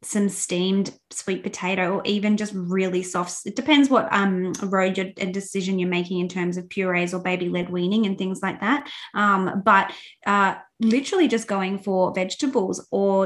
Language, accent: English, Australian